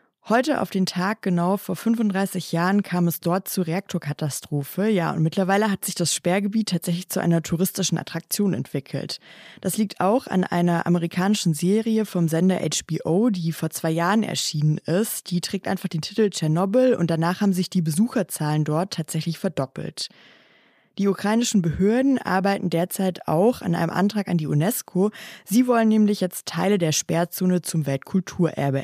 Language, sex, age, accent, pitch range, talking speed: German, female, 20-39, German, 165-200 Hz, 160 wpm